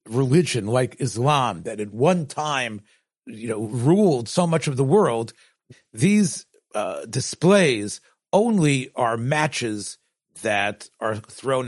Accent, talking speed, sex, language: American, 125 wpm, male, English